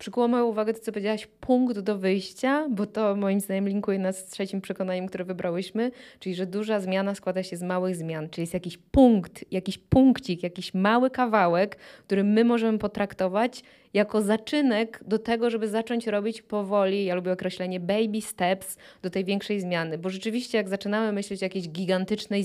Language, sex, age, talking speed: Polish, female, 20-39, 175 wpm